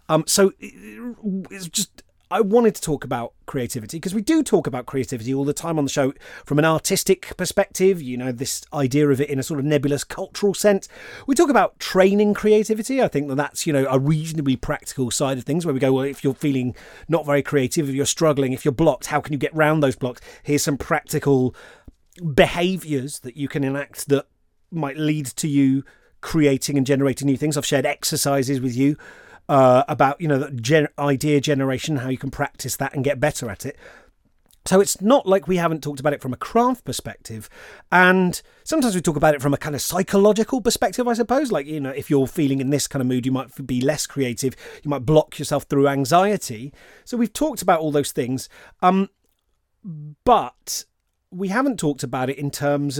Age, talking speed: 30-49, 205 wpm